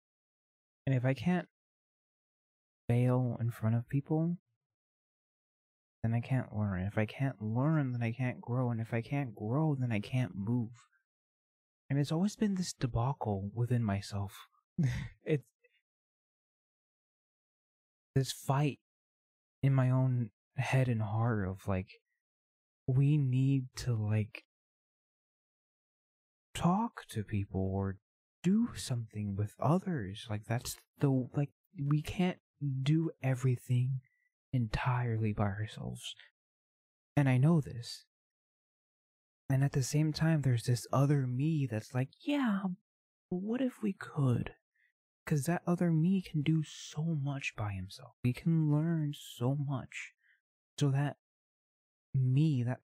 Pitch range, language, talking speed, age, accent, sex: 115-150 Hz, English, 125 wpm, 20-39, American, male